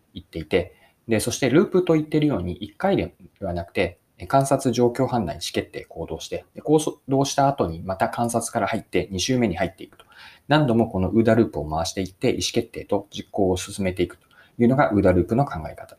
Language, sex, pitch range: Japanese, male, 95-140 Hz